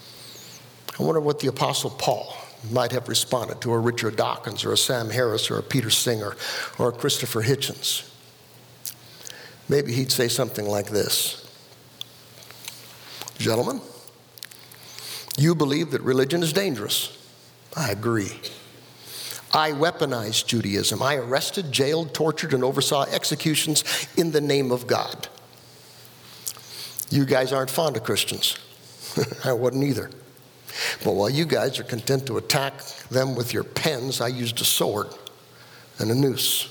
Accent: American